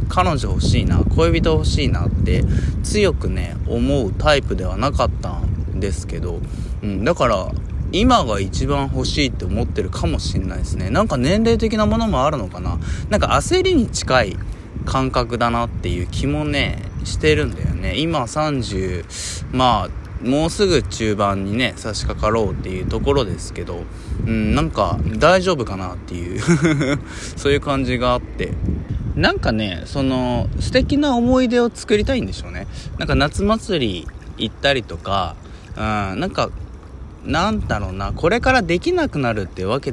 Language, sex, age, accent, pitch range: Japanese, male, 20-39, native, 90-140 Hz